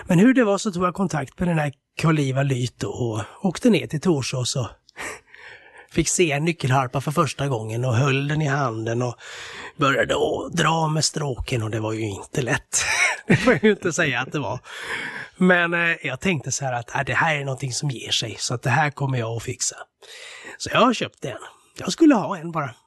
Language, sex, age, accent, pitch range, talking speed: Swedish, male, 30-49, native, 130-180 Hz, 215 wpm